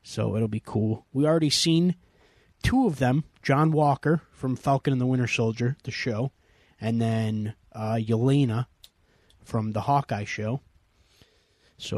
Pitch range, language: 110-135 Hz, English